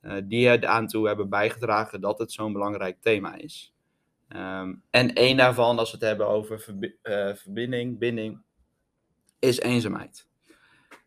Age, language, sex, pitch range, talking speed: 20-39, Dutch, male, 105-115 Hz, 140 wpm